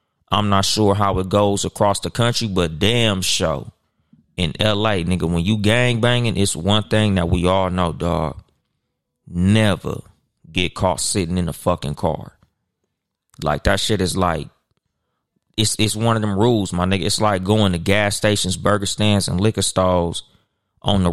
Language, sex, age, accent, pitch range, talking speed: English, male, 30-49, American, 90-110 Hz, 175 wpm